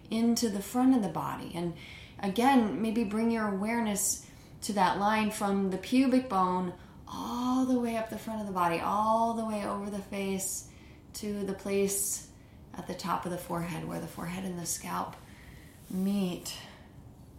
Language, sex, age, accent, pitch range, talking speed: English, female, 30-49, American, 180-220 Hz, 175 wpm